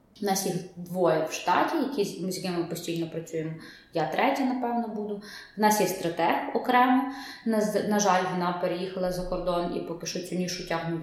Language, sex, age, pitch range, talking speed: Ukrainian, female, 20-39, 175-210 Hz, 190 wpm